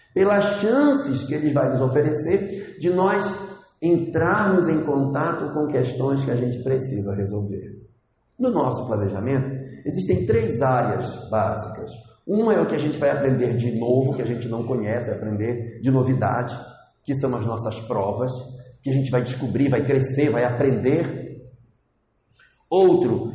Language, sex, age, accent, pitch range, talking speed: Portuguese, male, 60-79, Brazilian, 125-170 Hz, 150 wpm